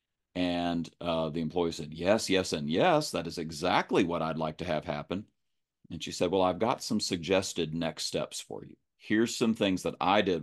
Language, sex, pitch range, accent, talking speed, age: English, male, 85-110 Hz, American, 205 wpm, 40-59